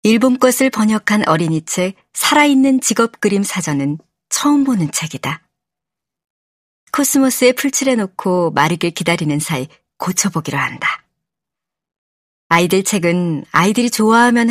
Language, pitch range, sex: Korean, 165-220 Hz, male